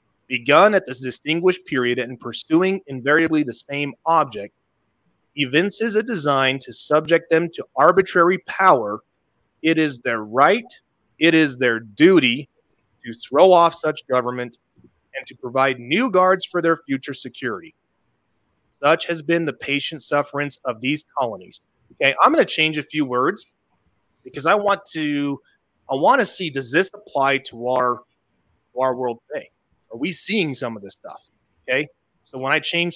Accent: American